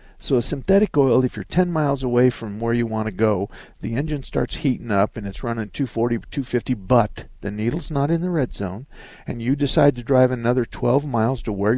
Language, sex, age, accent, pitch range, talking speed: English, male, 50-69, American, 105-135 Hz, 215 wpm